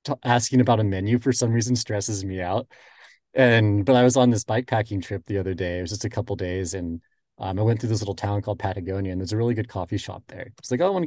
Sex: male